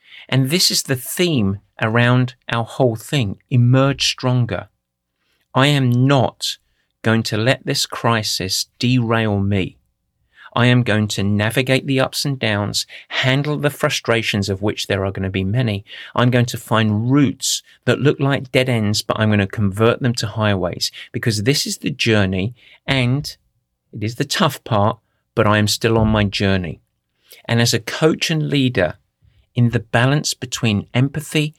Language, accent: English, British